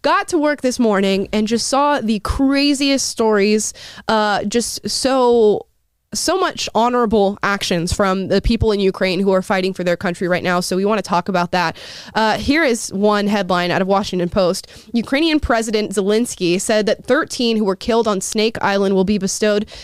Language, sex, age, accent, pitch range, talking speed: English, female, 20-39, American, 195-230 Hz, 190 wpm